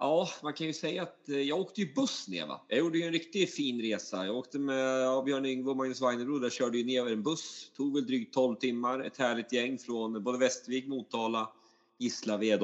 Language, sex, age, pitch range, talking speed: Swedish, male, 30-49, 110-140 Hz, 210 wpm